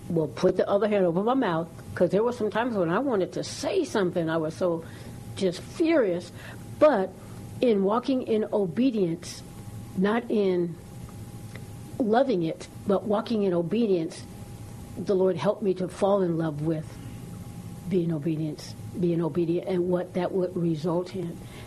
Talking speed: 155 wpm